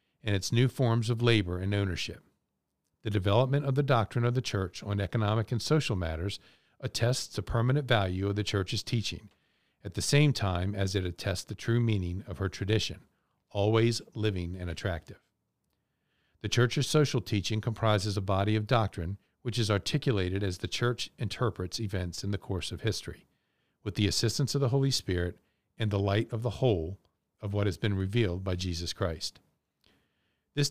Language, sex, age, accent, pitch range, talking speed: English, male, 50-69, American, 95-120 Hz, 175 wpm